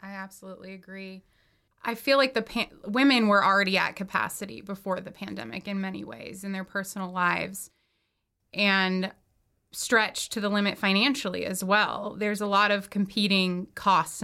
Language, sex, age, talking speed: English, female, 20-39, 155 wpm